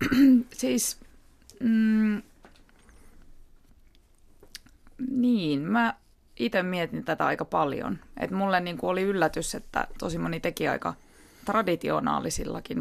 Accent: native